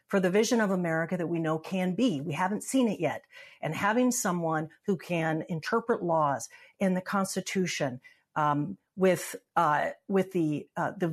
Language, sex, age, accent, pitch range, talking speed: English, female, 50-69, American, 165-215 Hz, 160 wpm